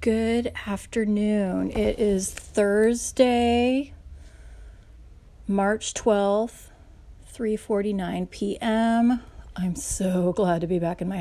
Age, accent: 30-49, American